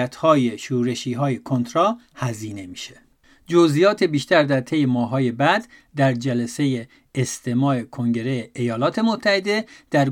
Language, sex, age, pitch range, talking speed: Persian, male, 50-69, 130-180 Hz, 120 wpm